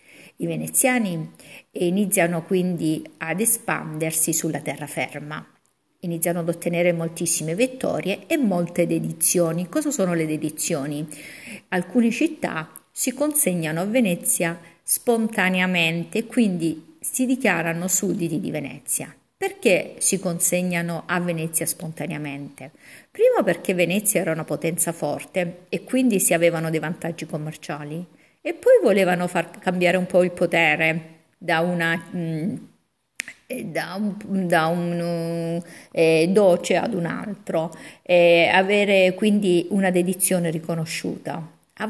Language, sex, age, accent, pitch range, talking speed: Italian, female, 50-69, native, 165-205 Hz, 115 wpm